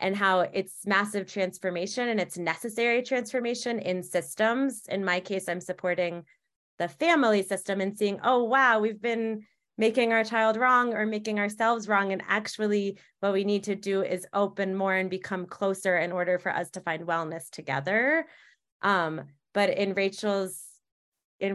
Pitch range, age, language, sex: 175-210 Hz, 20-39, English, female